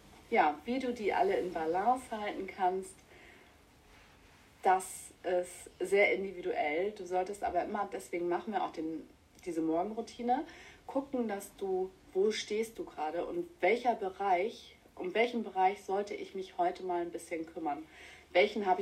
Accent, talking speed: German, 145 wpm